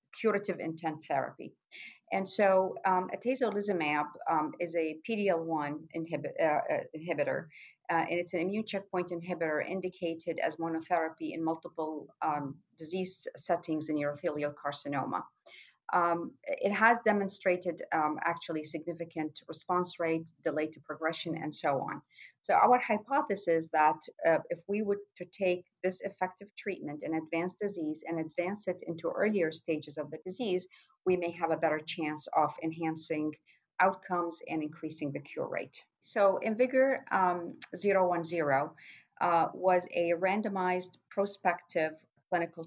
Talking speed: 130 wpm